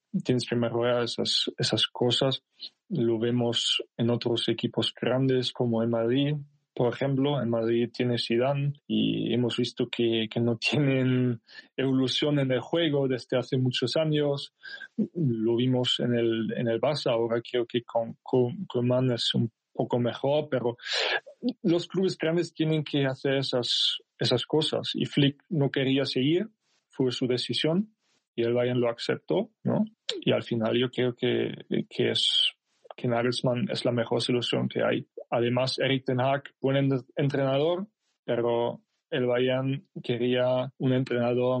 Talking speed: 155 wpm